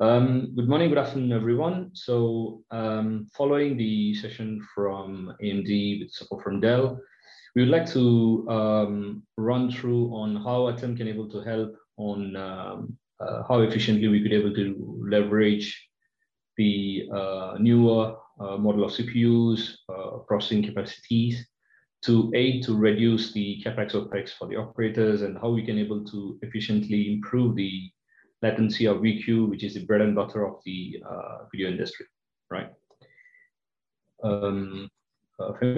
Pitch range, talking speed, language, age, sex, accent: 105-120 Hz, 145 wpm, English, 30-49, male, Indian